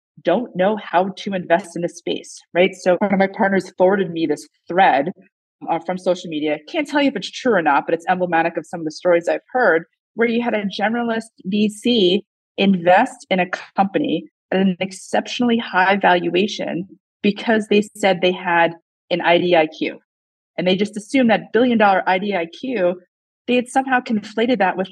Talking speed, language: 185 wpm, English